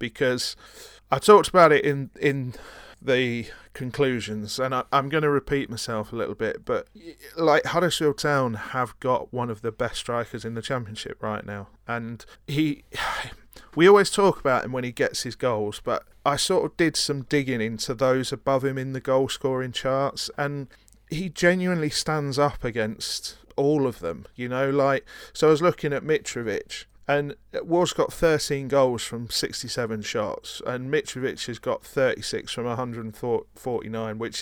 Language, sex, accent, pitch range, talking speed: English, male, British, 120-155 Hz, 175 wpm